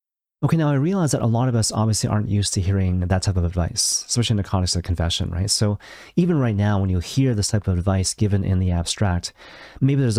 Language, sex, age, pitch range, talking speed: English, male, 30-49, 100-125 Hz, 255 wpm